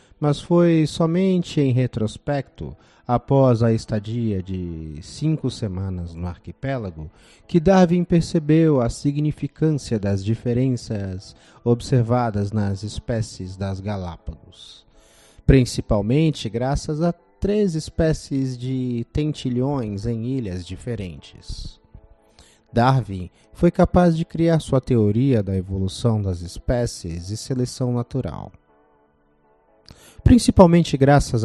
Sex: male